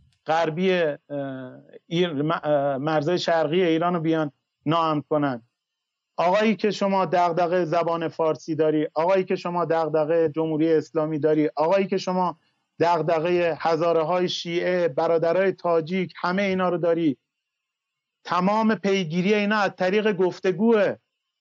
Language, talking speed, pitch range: Persian, 110 wpm, 160-195 Hz